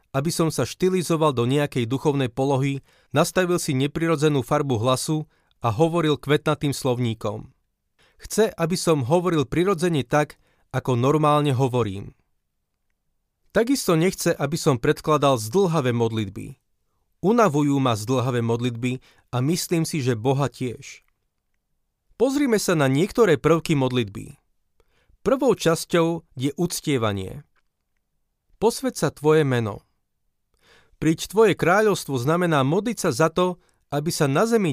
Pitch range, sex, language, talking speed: 130-170 Hz, male, Slovak, 120 wpm